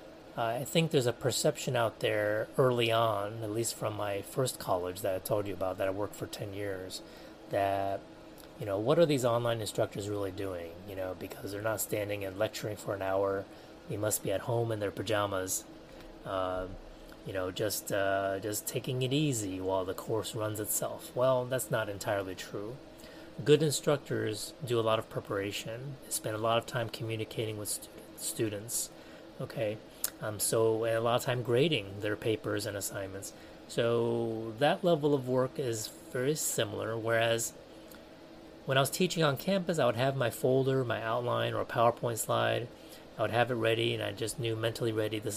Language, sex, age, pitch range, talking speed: English, male, 30-49, 100-125 Hz, 190 wpm